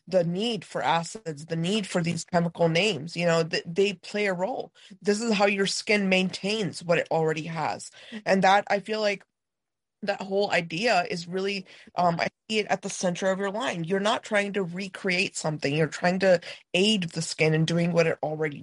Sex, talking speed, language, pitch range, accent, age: female, 205 wpm, English, 165-200 Hz, American, 20-39